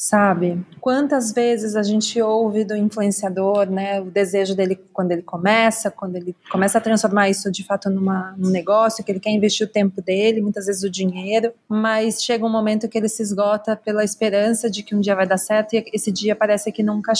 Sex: female